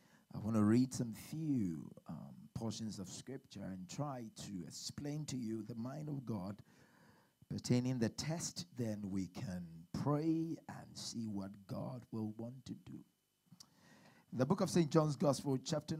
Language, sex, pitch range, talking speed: English, male, 100-140 Hz, 160 wpm